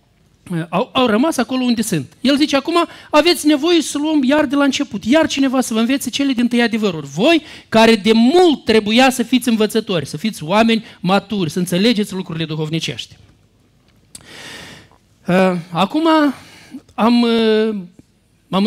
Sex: male